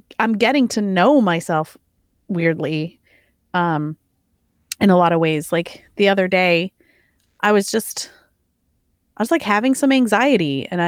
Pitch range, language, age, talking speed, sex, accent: 180-250 Hz, English, 30-49, 145 wpm, female, American